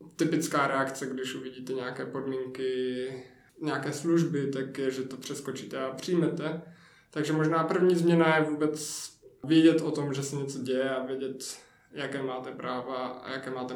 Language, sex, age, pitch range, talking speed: Czech, male, 20-39, 130-155 Hz, 155 wpm